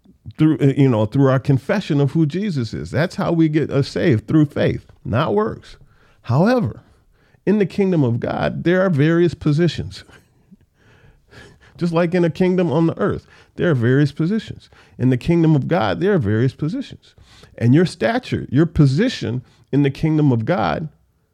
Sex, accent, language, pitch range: male, American, English, 115-170 Hz